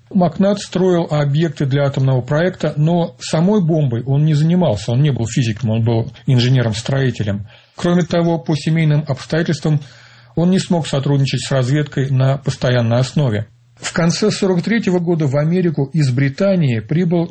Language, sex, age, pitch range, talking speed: Russian, male, 40-59, 125-165 Hz, 145 wpm